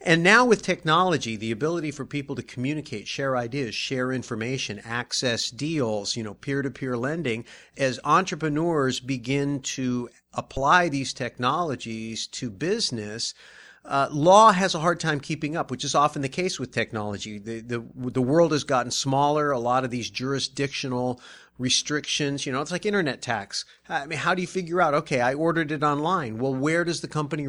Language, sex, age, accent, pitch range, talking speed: English, male, 40-59, American, 125-155 Hz, 180 wpm